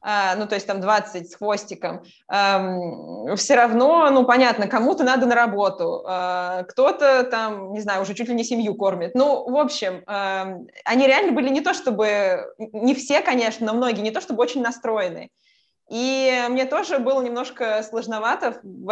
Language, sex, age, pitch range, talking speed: Russian, female, 20-39, 215-265 Hz, 160 wpm